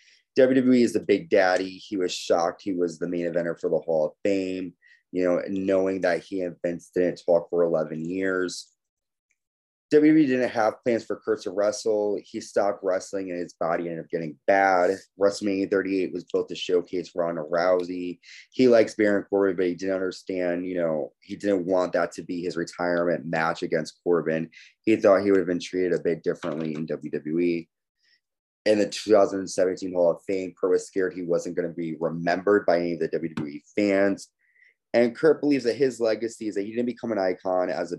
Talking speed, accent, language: 195 wpm, American, English